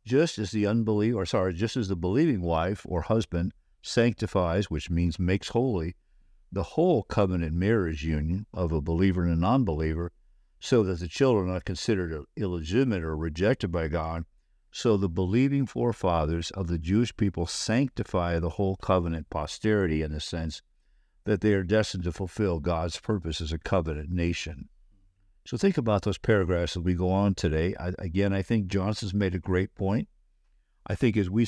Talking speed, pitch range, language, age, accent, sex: 175 wpm, 85-110 Hz, English, 60-79, American, male